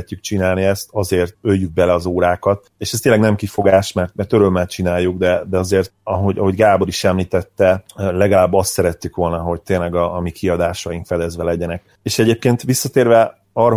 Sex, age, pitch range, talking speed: male, 30-49, 90-105 Hz, 175 wpm